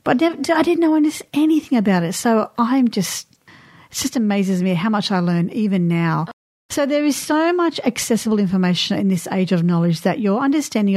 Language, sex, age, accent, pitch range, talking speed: English, female, 40-59, Australian, 175-225 Hz, 190 wpm